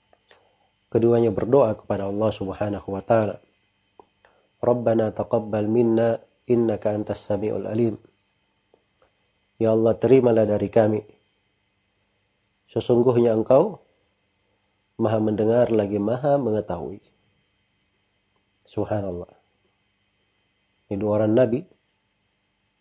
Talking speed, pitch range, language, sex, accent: 80 wpm, 100-115 Hz, Indonesian, male, native